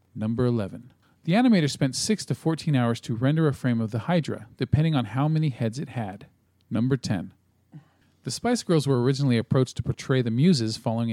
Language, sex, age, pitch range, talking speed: English, male, 40-59, 115-145 Hz, 195 wpm